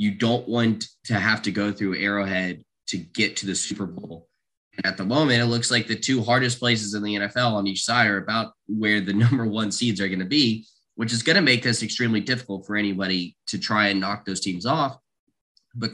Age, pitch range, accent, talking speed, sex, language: 20-39, 100-120 Hz, American, 225 wpm, male, English